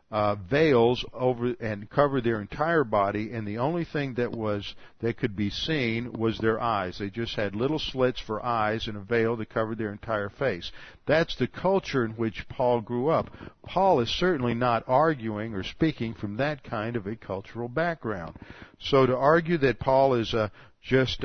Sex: male